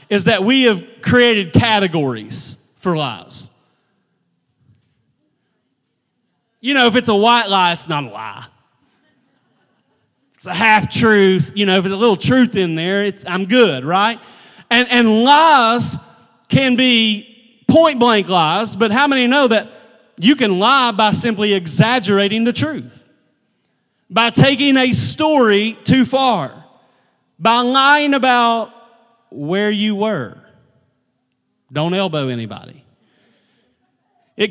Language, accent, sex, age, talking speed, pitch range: English, American, male, 30-49, 125 wpm, 180-230 Hz